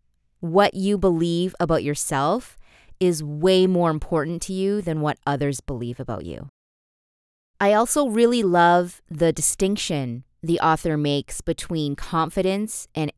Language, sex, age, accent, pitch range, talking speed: English, female, 20-39, American, 150-190 Hz, 130 wpm